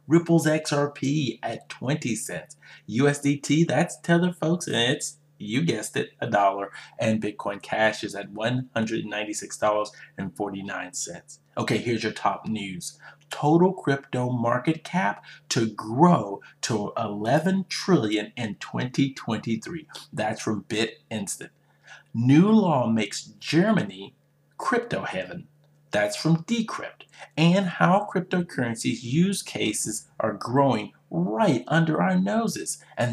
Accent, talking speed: American, 110 wpm